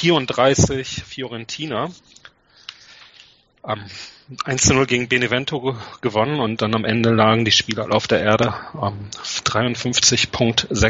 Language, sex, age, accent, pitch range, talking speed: German, male, 30-49, German, 110-130 Hz, 105 wpm